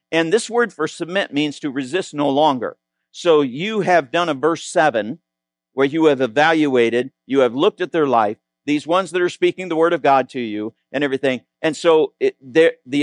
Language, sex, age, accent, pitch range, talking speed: English, male, 50-69, American, 130-180 Hz, 200 wpm